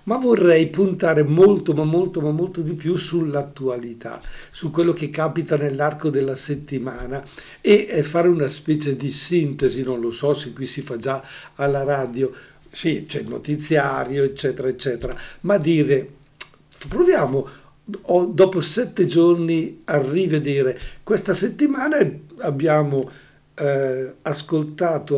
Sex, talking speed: male, 125 wpm